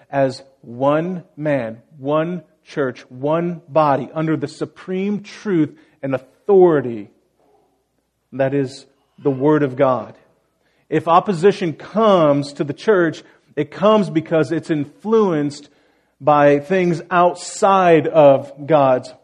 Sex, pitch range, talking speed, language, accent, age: male, 145-175 Hz, 110 wpm, English, American, 40-59